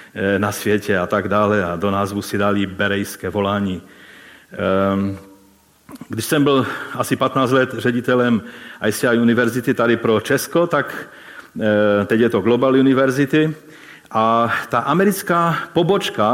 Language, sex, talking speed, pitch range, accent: Czech, male, 125 wpm, 105-135 Hz, native